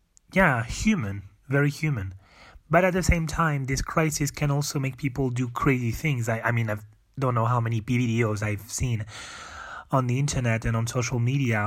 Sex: male